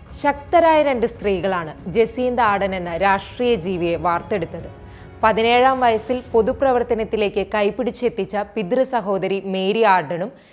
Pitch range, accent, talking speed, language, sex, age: 195-250 Hz, native, 95 wpm, Malayalam, female, 20-39